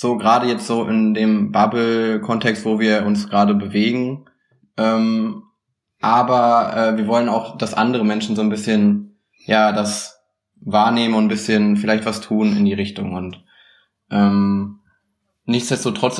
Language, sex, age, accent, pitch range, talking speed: German, male, 20-39, German, 105-120 Hz, 145 wpm